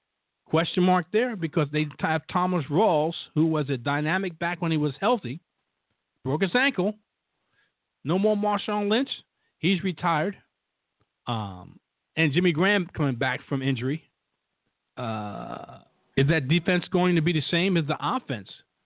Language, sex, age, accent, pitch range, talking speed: English, male, 50-69, American, 130-175 Hz, 145 wpm